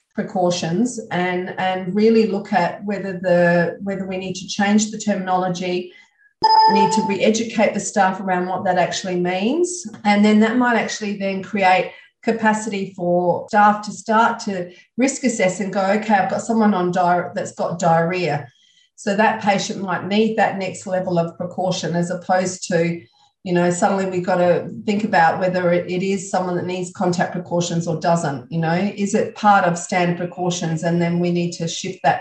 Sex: female